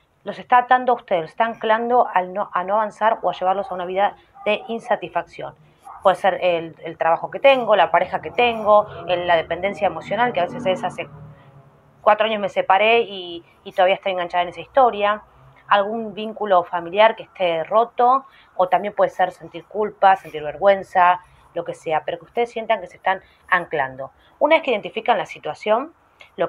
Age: 20-39